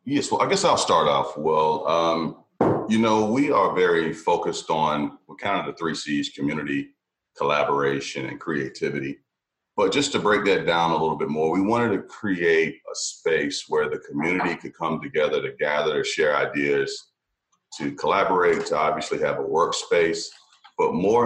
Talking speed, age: 175 wpm, 40-59